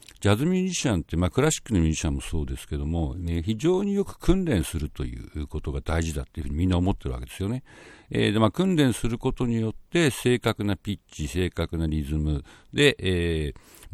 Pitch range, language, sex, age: 80-130 Hz, Japanese, male, 60-79